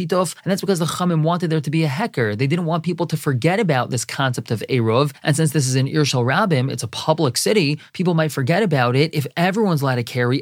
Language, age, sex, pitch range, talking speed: English, 20-39, male, 135-175 Hz, 250 wpm